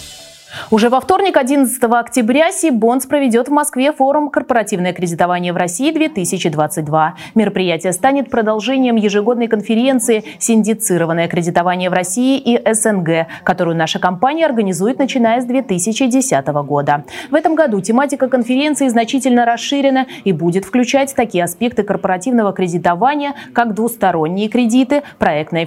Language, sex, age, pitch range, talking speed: Russian, female, 20-39, 180-260 Hz, 120 wpm